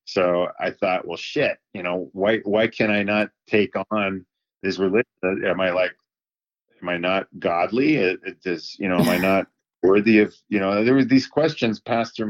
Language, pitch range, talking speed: English, 90-105 Hz, 200 wpm